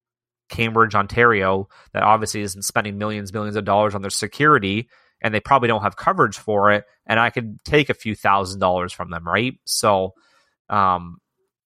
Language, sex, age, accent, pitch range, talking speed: English, male, 30-49, American, 100-115 Hz, 175 wpm